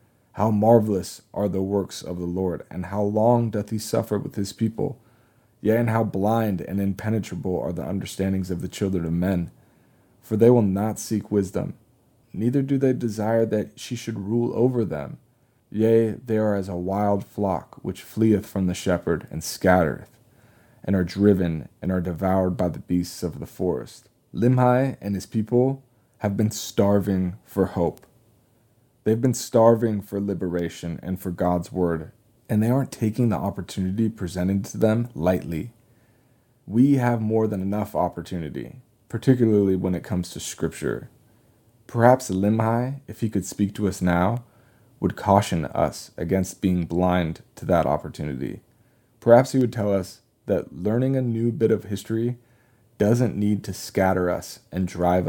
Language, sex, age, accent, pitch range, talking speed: English, male, 20-39, American, 95-115 Hz, 165 wpm